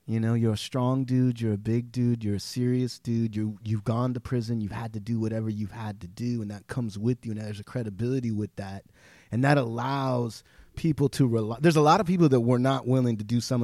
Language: English